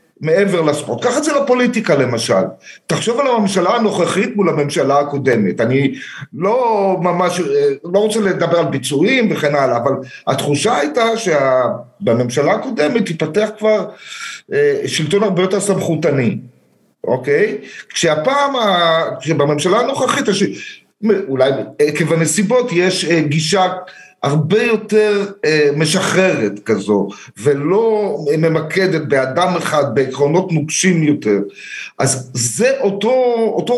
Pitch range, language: 145-210 Hz, Hebrew